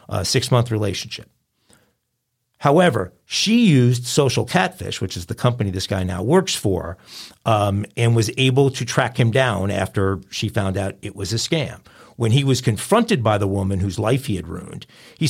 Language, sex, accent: English, male, American